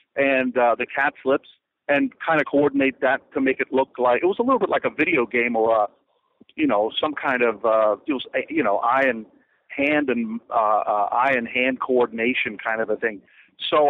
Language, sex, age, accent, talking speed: English, male, 50-69, American, 205 wpm